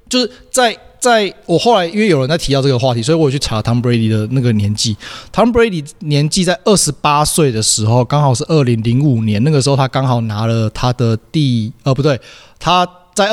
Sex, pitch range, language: male, 120-155 Hz, Chinese